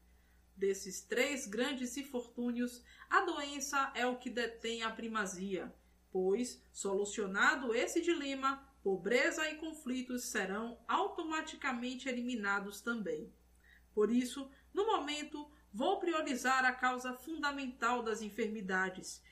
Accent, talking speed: Brazilian, 105 wpm